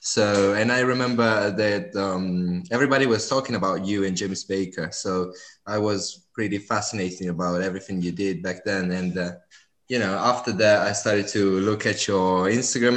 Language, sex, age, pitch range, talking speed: Italian, male, 20-39, 95-115 Hz, 175 wpm